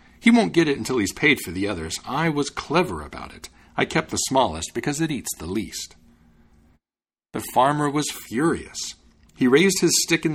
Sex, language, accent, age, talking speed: male, English, American, 50-69, 190 wpm